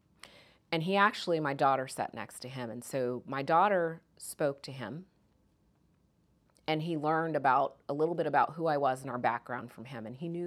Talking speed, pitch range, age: 200 wpm, 125-160 Hz, 30-49